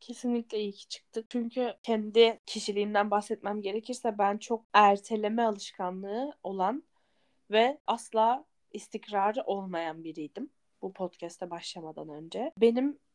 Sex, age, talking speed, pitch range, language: female, 10-29, 110 wpm, 200-240 Hz, Turkish